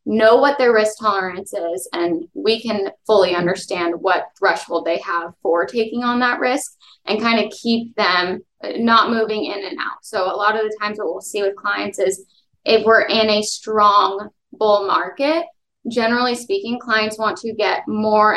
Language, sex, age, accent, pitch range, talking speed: English, female, 20-39, American, 200-235 Hz, 185 wpm